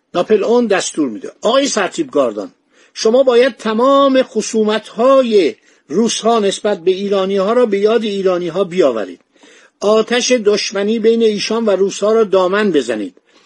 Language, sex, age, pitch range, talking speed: Persian, male, 50-69, 190-230 Hz, 150 wpm